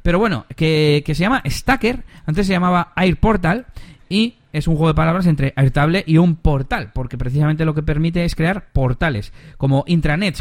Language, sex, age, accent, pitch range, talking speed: Spanish, male, 30-49, Spanish, 120-175 Hz, 185 wpm